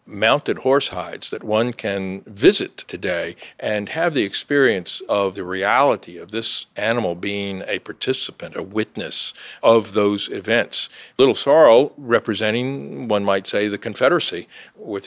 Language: English